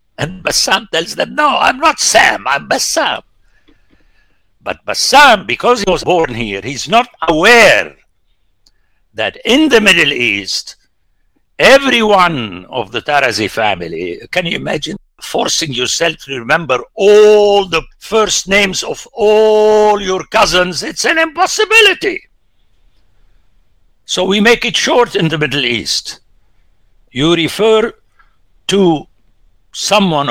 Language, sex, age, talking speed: English, male, 60-79, 120 wpm